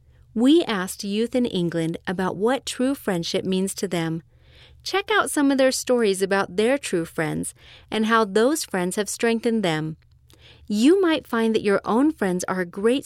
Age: 40-59